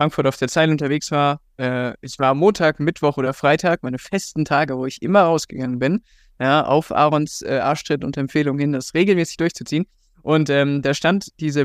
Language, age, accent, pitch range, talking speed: German, 20-39, German, 135-170 Hz, 190 wpm